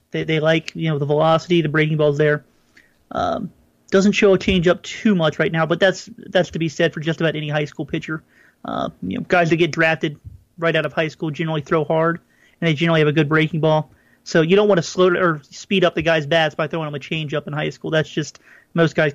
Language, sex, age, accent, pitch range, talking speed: English, male, 30-49, American, 155-185 Hz, 260 wpm